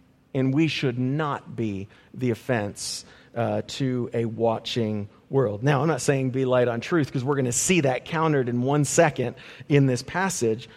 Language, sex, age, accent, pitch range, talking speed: English, male, 40-59, American, 115-150 Hz, 185 wpm